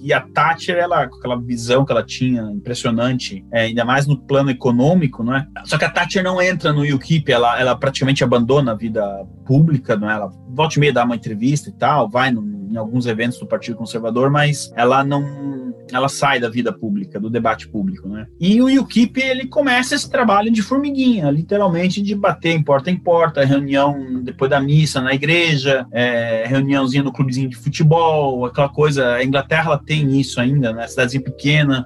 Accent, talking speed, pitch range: Brazilian, 200 wpm, 125-180 Hz